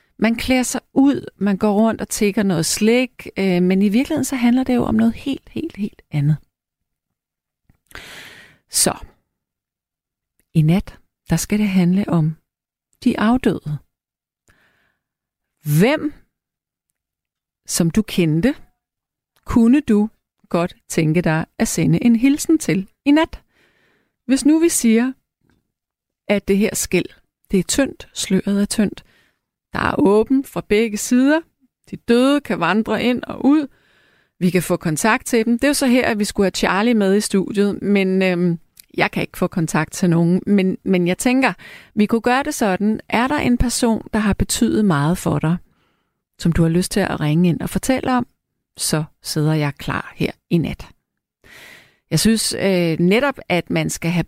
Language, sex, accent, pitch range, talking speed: Danish, female, native, 175-240 Hz, 165 wpm